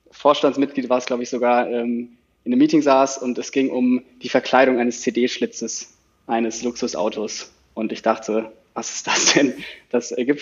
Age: 20-39